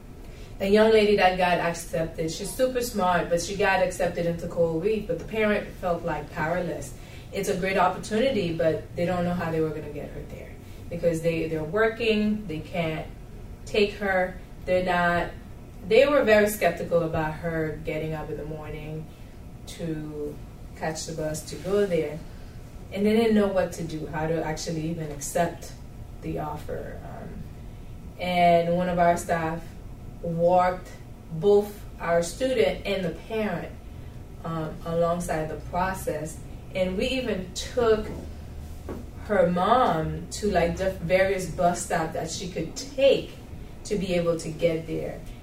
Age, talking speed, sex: 20-39, 155 wpm, female